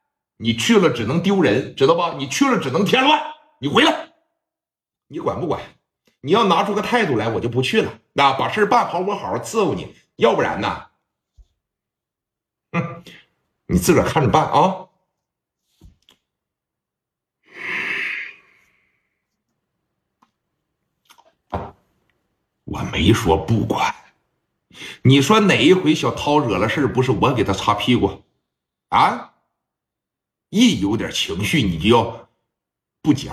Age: 60-79